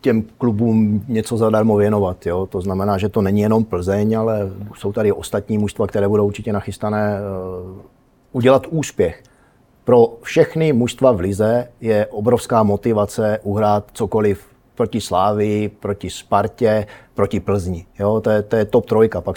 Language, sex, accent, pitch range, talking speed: Czech, male, native, 105-115 Hz, 140 wpm